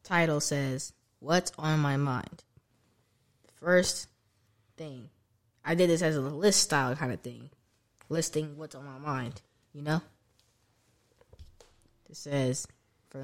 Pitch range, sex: 125-160 Hz, female